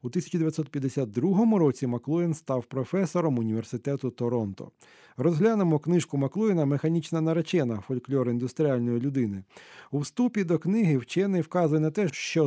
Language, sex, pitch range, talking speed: Ukrainian, male, 135-170 Hz, 120 wpm